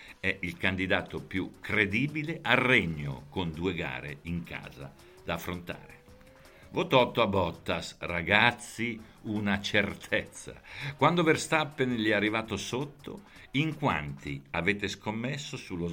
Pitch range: 80-115 Hz